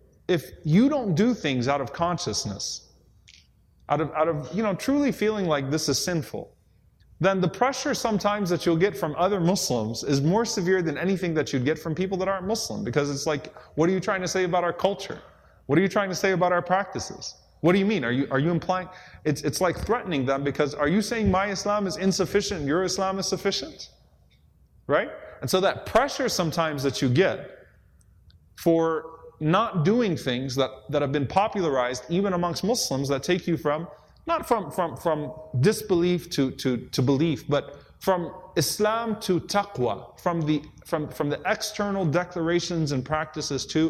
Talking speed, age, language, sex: 190 wpm, 20-39, English, male